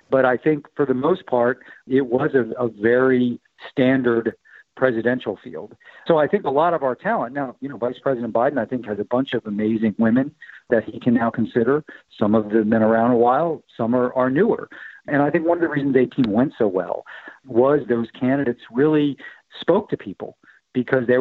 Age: 50-69